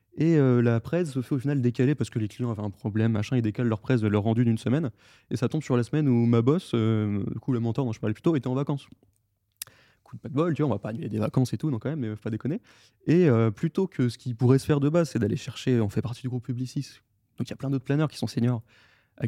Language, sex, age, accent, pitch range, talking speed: French, male, 20-39, French, 110-140 Hz, 310 wpm